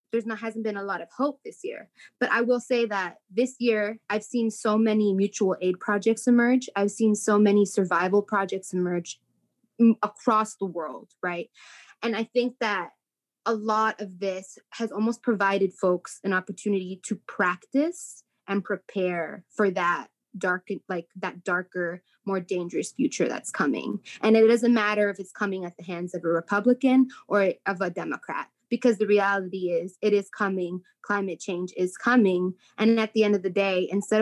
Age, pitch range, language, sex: 20-39, 190-225 Hz, English, female